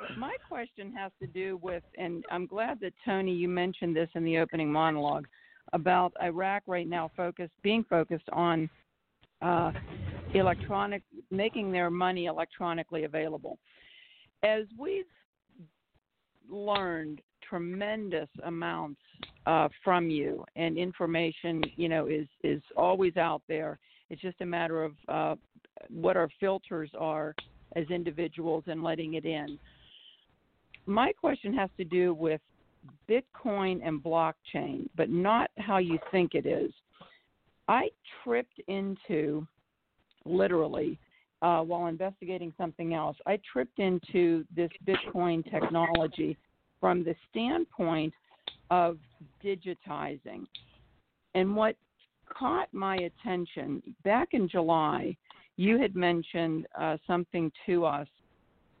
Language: English